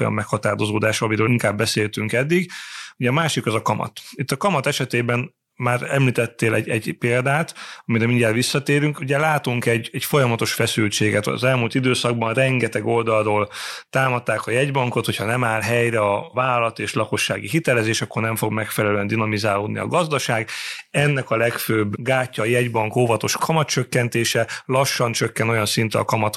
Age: 30-49